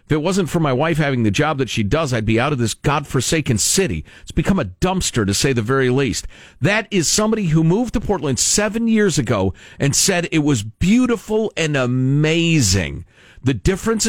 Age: 50-69